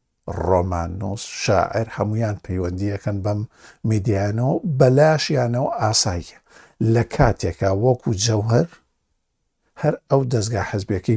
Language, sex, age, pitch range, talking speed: Arabic, male, 60-79, 105-130 Hz, 100 wpm